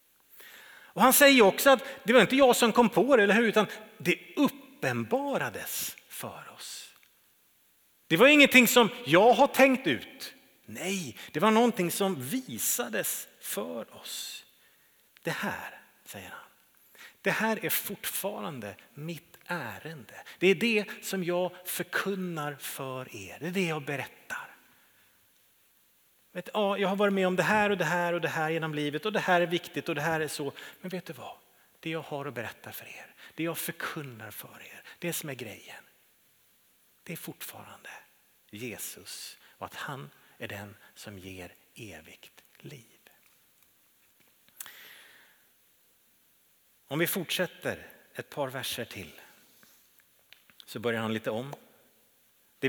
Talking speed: 145 wpm